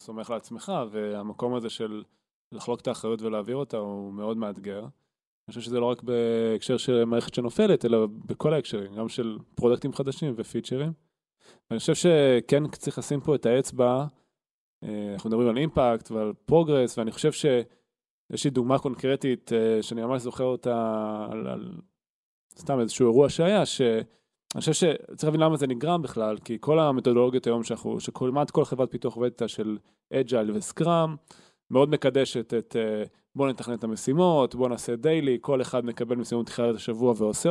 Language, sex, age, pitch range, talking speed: Hebrew, male, 20-39, 115-140 Hz, 155 wpm